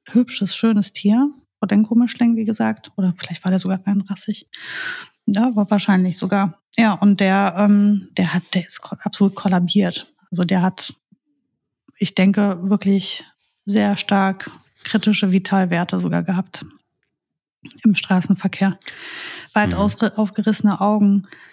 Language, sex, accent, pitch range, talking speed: German, female, German, 185-210 Hz, 130 wpm